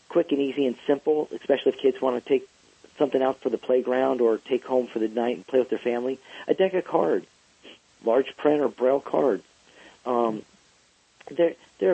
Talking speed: 185 wpm